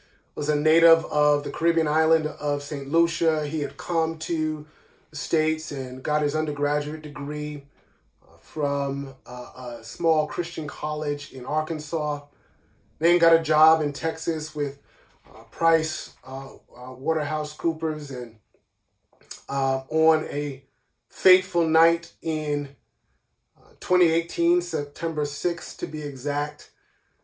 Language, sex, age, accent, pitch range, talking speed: English, male, 30-49, American, 145-165 Hz, 110 wpm